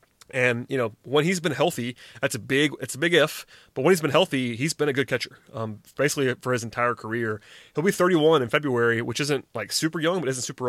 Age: 30-49